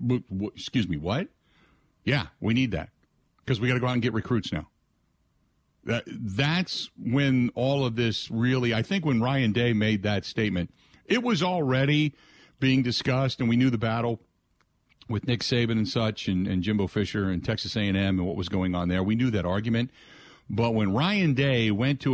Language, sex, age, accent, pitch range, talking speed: English, male, 50-69, American, 95-130 Hz, 185 wpm